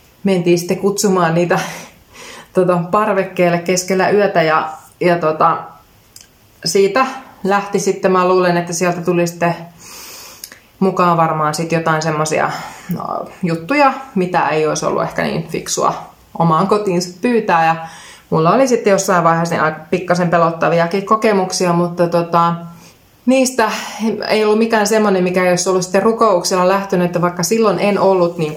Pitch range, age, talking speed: 165-195 Hz, 20-39, 135 wpm